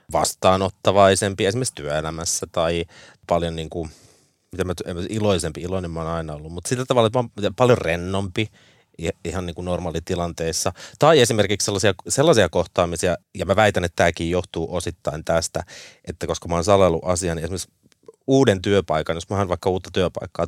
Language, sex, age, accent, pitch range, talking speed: Finnish, male, 30-49, native, 85-105 Hz, 155 wpm